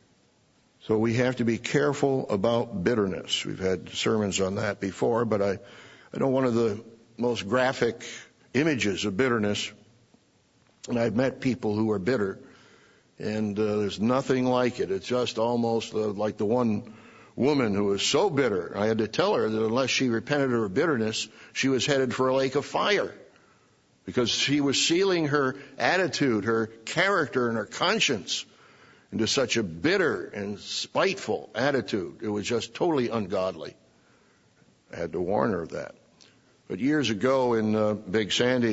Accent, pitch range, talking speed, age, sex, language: American, 105-125 Hz, 165 wpm, 60-79, male, English